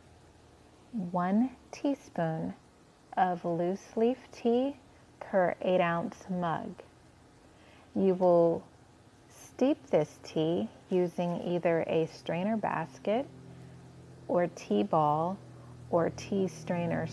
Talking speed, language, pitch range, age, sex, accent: 90 wpm, English, 160-190 Hz, 30-49, female, American